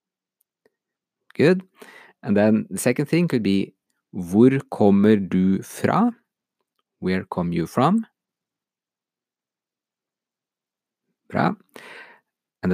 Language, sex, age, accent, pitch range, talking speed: English, male, 50-69, Norwegian, 105-160 Hz, 80 wpm